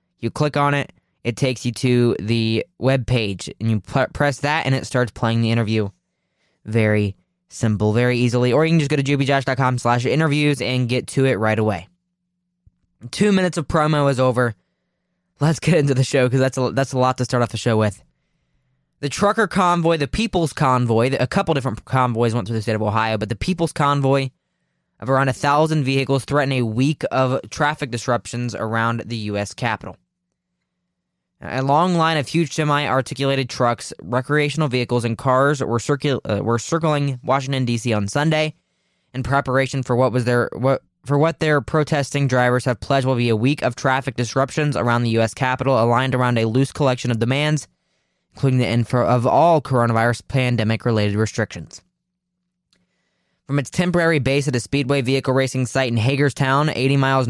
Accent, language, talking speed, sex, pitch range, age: American, English, 180 wpm, male, 120-145 Hz, 20-39